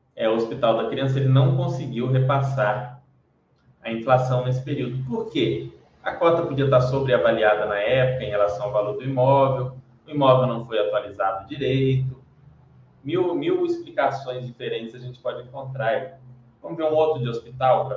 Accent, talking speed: Brazilian, 165 wpm